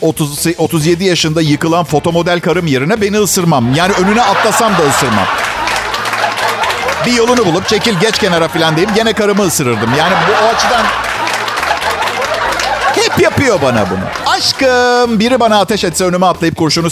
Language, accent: Turkish, native